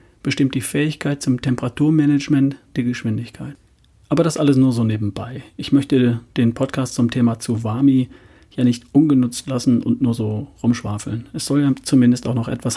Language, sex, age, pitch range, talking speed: German, male, 40-59, 120-140 Hz, 165 wpm